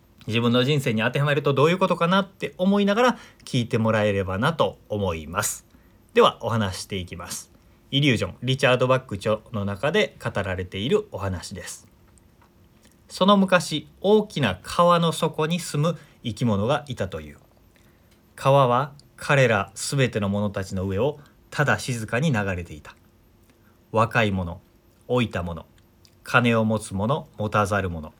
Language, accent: Japanese, native